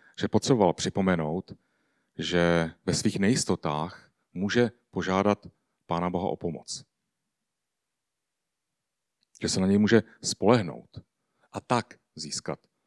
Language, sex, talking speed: Czech, male, 105 wpm